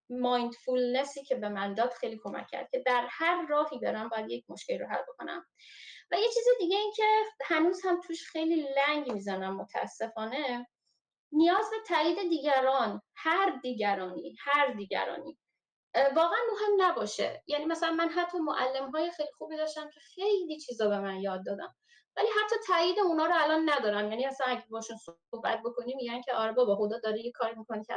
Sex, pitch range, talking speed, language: female, 225-335 Hz, 175 wpm, Persian